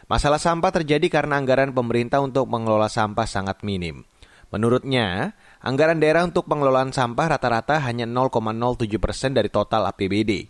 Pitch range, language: 120-170 Hz, Indonesian